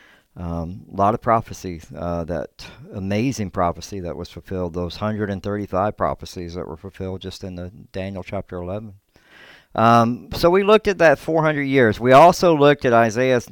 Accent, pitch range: American, 95-125 Hz